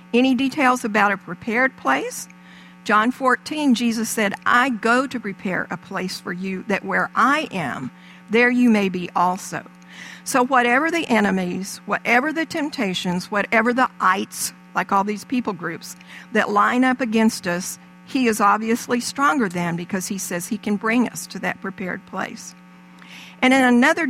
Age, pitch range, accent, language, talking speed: 50-69, 180-235 Hz, American, English, 165 wpm